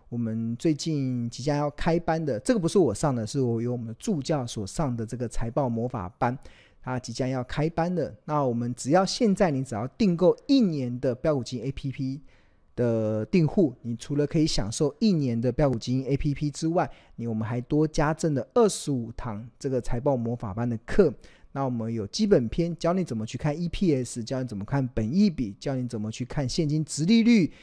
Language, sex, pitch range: Chinese, male, 120-160 Hz